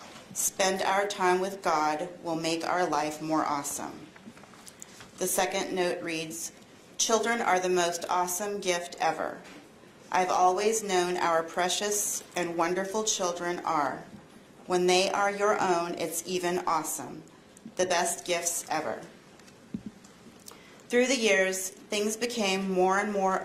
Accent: American